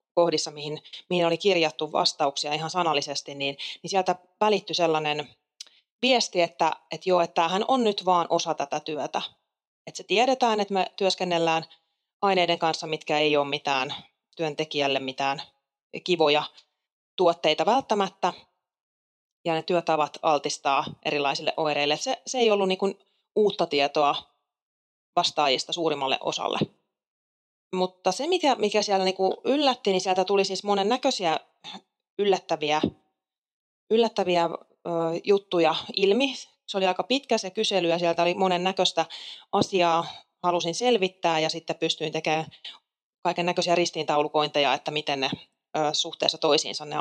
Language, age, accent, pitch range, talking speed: Finnish, 30-49, native, 155-200 Hz, 135 wpm